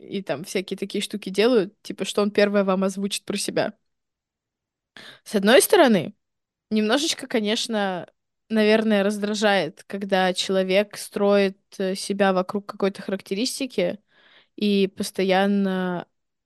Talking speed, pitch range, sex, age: 110 wpm, 195-245 Hz, female, 20-39